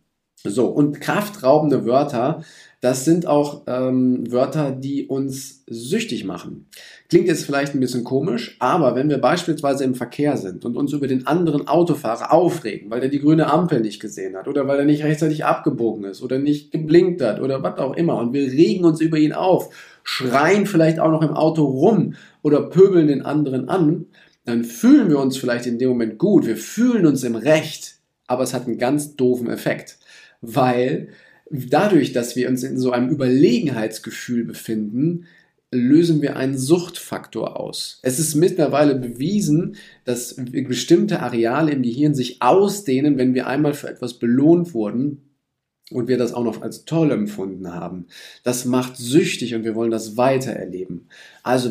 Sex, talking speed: male, 170 wpm